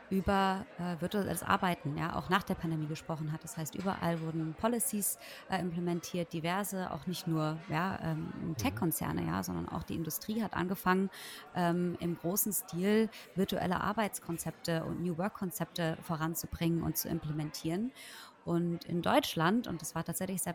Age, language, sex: 30-49, German, female